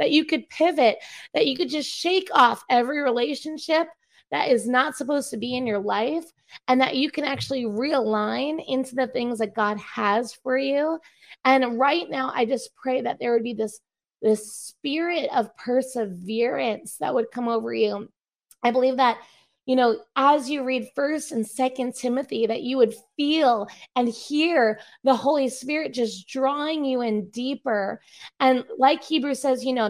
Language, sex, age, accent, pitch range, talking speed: English, female, 20-39, American, 225-275 Hz, 175 wpm